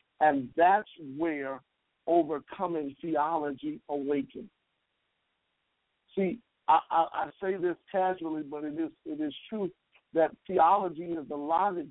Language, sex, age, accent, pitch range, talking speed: English, male, 50-69, American, 145-175 Hz, 120 wpm